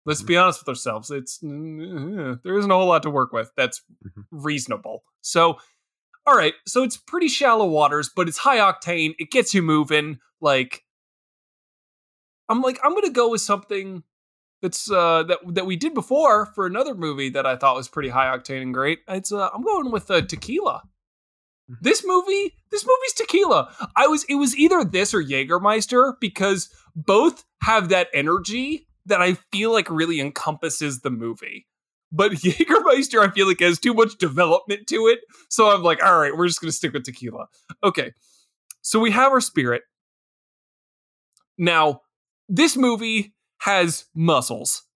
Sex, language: male, English